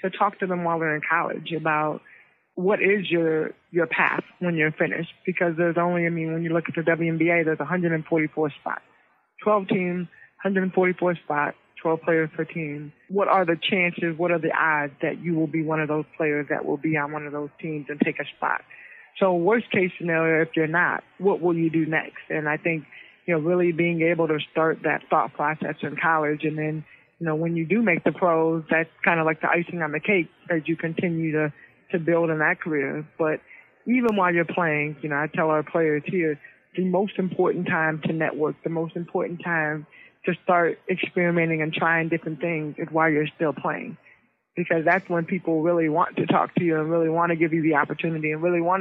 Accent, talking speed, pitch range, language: American, 220 wpm, 155-175 Hz, English